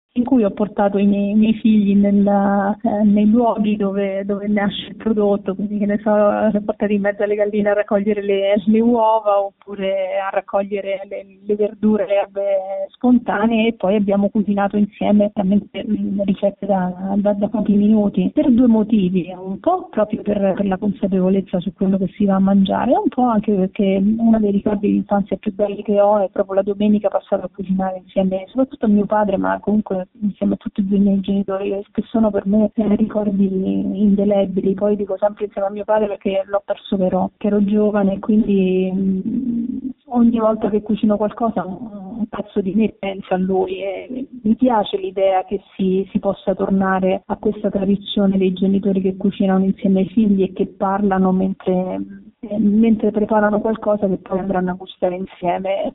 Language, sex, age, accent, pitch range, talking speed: Italian, female, 30-49, native, 195-215 Hz, 180 wpm